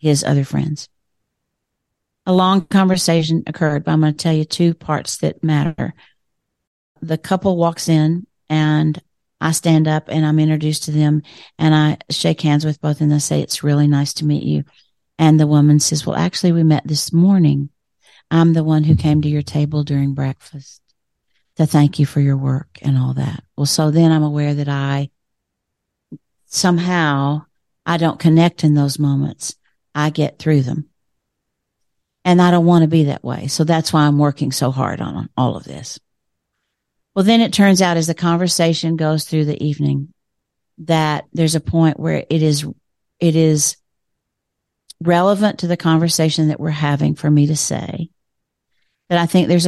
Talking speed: 180 wpm